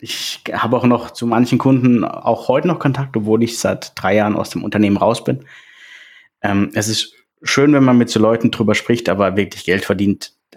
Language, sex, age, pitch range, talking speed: German, male, 20-39, 105-130 Hz, 205 wpm